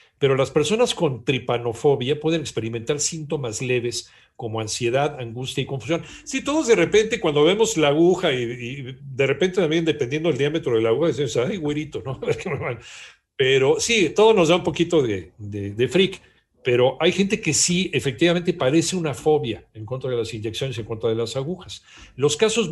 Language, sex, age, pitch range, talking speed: Spanish, male, 50-69, 125-175 Hz, 180 wpm